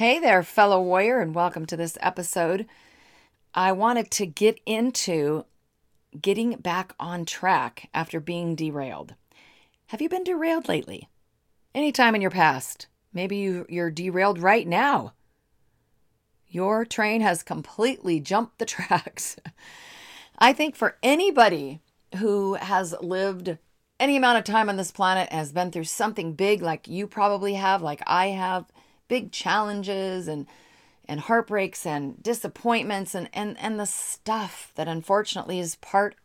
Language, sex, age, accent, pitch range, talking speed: English, female, 40-59, American, 170-225 Hz, 140 wpm